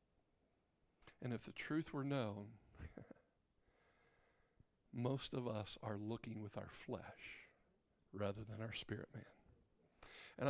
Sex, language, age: male, English, 50-69